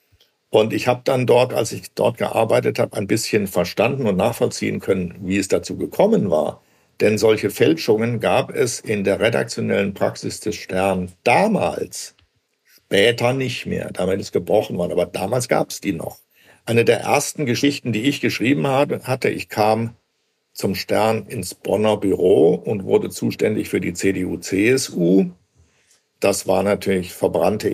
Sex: male